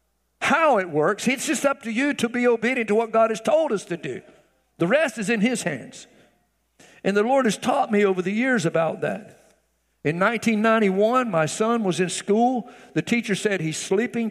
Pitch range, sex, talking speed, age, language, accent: 150-220 Hz, male, 200 wpm, 60-79, English, American